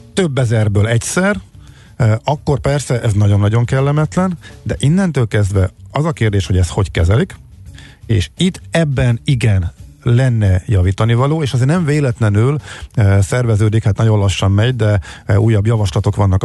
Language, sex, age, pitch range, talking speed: Hungarian, male, 50-69, 100-130 Hz, 140 wpm